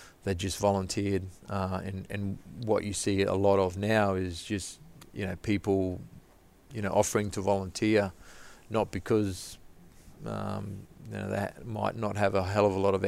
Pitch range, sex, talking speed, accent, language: 95-110 Hz, male, 175 wpm, Australian, English